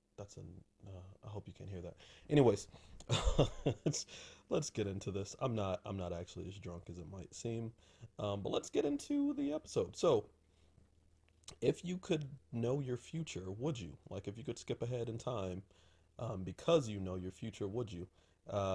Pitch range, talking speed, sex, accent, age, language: 90-115 Hz, 185 wpm, male, American, 30-49, English